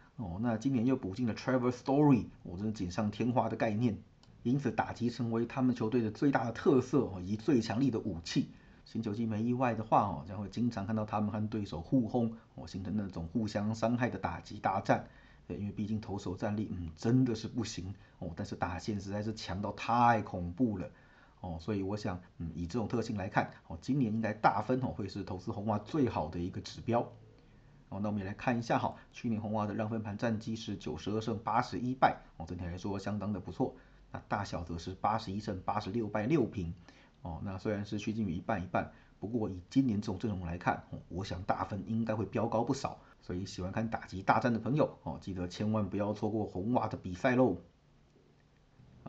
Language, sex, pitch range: Chinese, male, 95-120 Hz